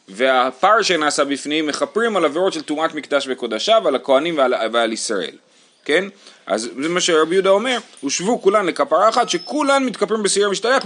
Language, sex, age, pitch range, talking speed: Hebrew, male, 30-49, 125-195 Hz, 160 wpm